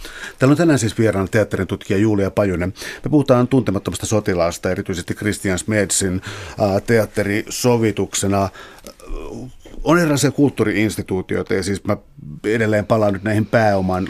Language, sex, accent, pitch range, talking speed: Finnish, male, native, 100-120 Hz, 115 wpm